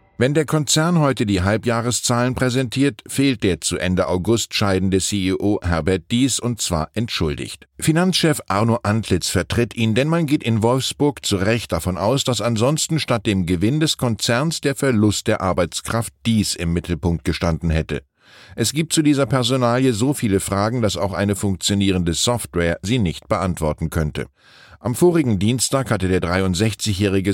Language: German